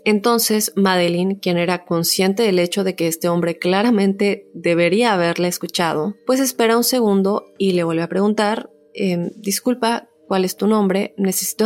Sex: female